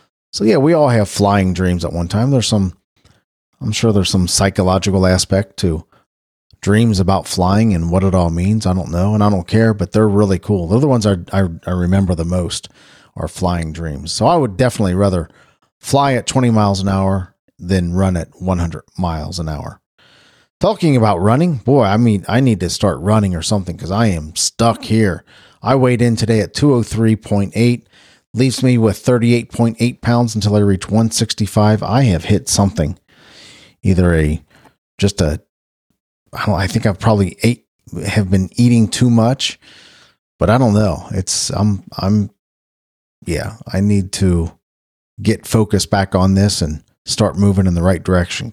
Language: English